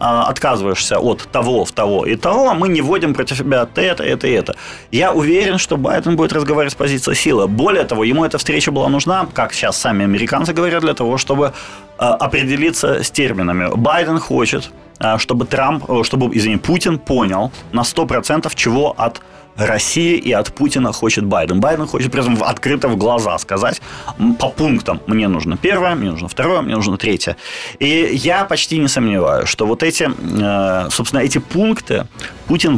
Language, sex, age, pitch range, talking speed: Ukrainian, male, 30-49, 110-160 Hz, 170 wpm